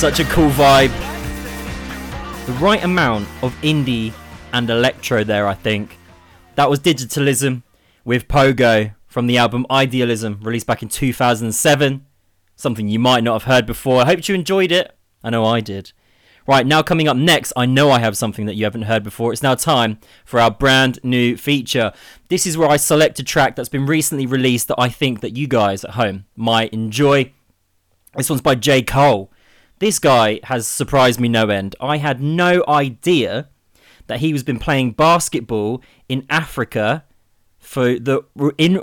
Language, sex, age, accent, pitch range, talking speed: English, male, 20-39, British, 110-155 Hz, 175 wpm